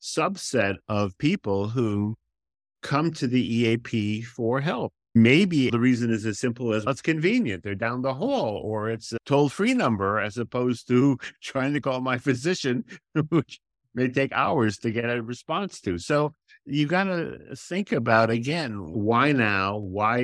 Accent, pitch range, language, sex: American, 95-135 Hz, English, male